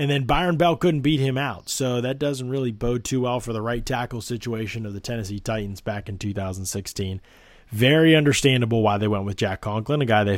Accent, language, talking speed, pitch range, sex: American, English, 220 wpm, 105-130 Hz, male